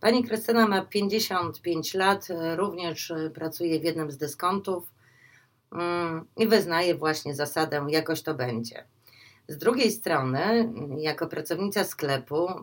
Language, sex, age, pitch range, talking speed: Polish, female, 30-49, 135-195 Hz, 115 wpm